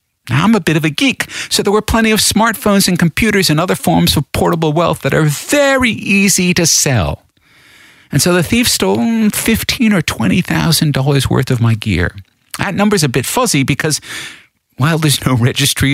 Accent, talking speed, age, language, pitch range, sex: American, 190 wpm, 50-69, English, 110-160 Hz, male